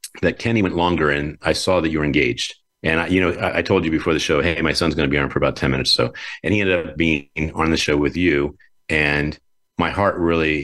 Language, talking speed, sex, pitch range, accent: English, 265 wpm, male, 80-100 Hz, American